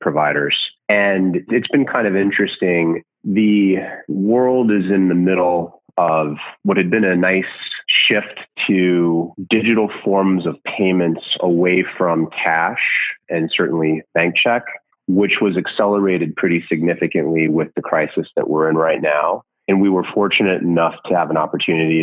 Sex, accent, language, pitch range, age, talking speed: male, American, English, 80-95 Hz, 30-49, 145 wpm